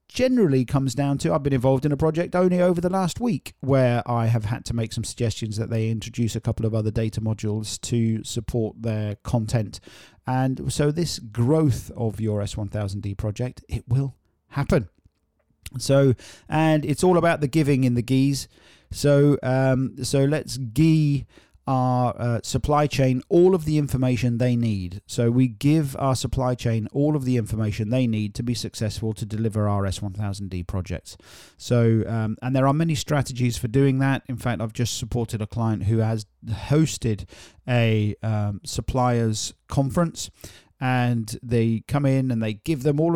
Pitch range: 110-140 Hz